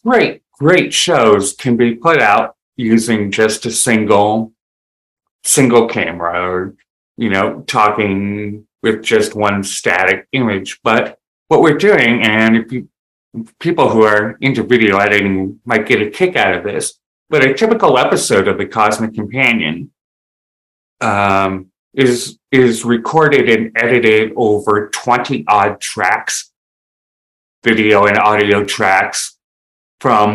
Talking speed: 130 wpm